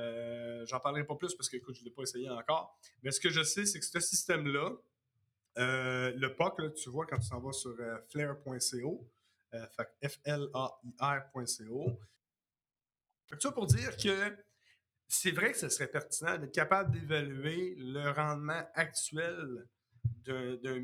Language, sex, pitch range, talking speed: French, male, 125-165 Hz, 165 wpm